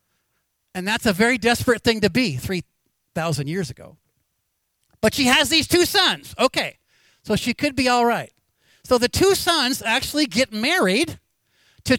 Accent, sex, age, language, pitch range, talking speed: American, male, 50-69, English, 175-245 Hz, 160 wpm